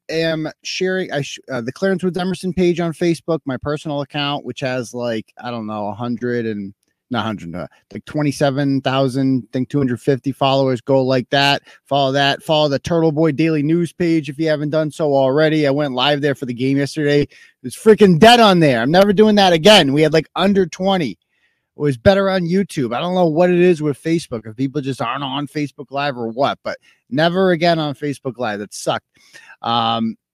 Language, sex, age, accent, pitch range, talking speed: English, male, 30-49, American, 125-160 Hz, 200 wpm